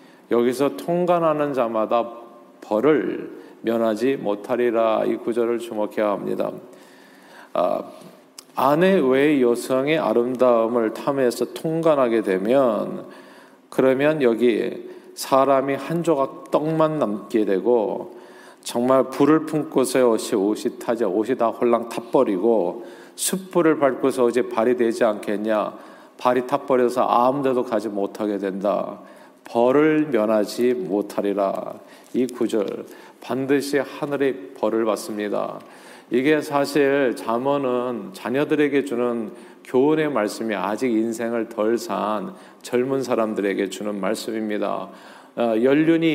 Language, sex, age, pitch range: Korean, male, 40-59, 115-140 Hz